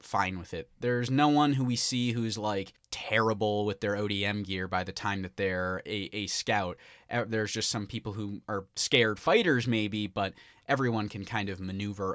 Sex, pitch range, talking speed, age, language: male, 95-120 Hz, 195 wpm, 20-39, English